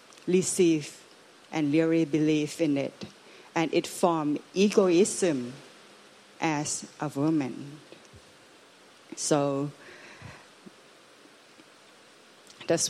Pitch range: 145-165 Hz